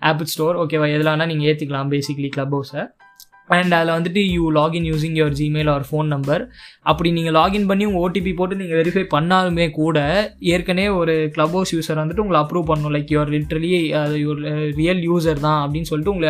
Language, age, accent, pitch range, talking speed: Tamil, 20-39, native, 150-180 Hz, 190 wpm